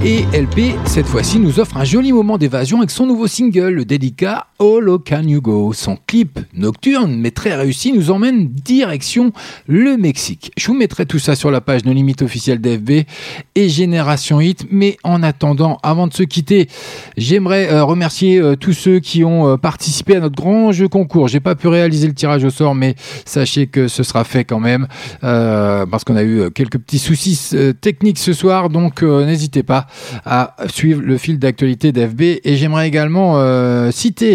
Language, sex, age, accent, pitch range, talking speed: French, male, 40-59, French, 130-180 Hz, 190 wpm